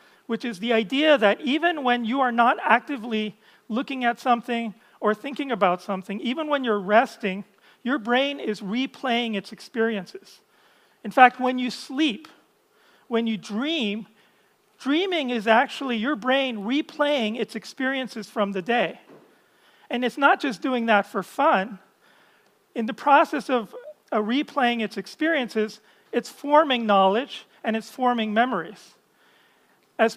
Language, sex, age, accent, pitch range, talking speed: English, male, 40-59, American, 215-270 Hz, 140 wpm